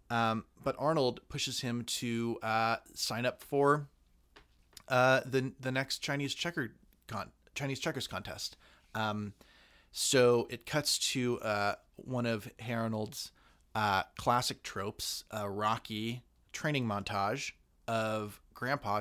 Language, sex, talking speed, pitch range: English, male, 125 wpm, 105-130 Hz